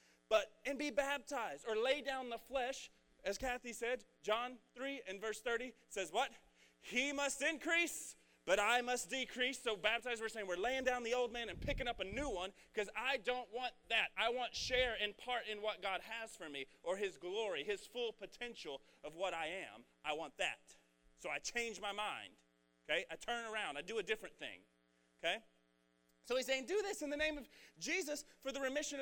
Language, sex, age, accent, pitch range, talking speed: English, male, 30-49, American, 160-265 Hz, 205 wpm